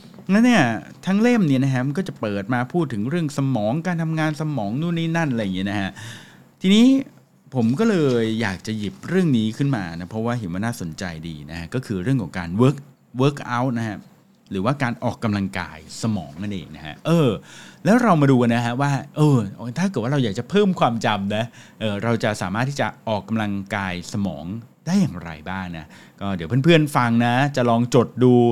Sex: male